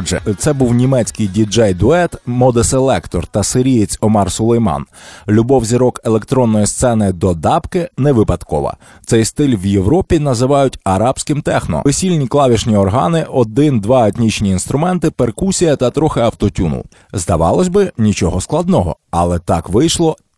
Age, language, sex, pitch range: 20-39, Ukrainian, male, 100-140 Hz